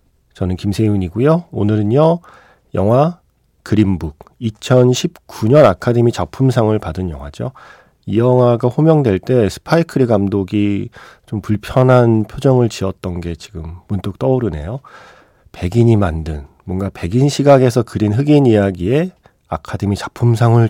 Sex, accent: male, native